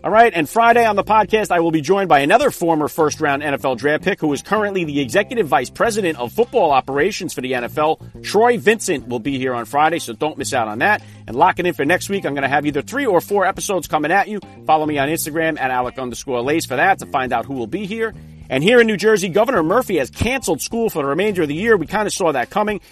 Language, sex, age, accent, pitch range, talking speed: English, male, 40-59, American, 140-190 Hz, 265 wpm